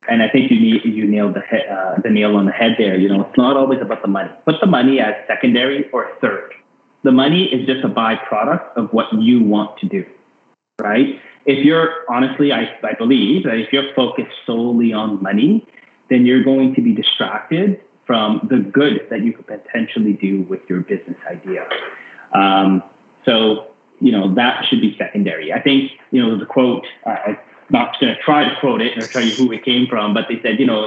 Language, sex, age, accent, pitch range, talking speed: English, male, 30-49, American, 110-185 Hz, 210 wpm